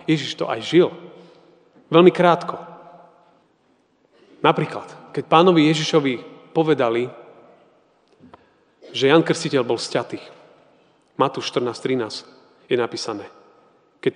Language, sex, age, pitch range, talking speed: Slovak, male, 40-59, 155-185 Hz, 90 wpm